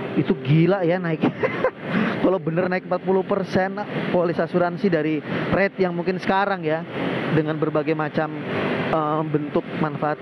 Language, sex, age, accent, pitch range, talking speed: Indonesian, male, 30-49, native, 135-165 Hz, 130 wpm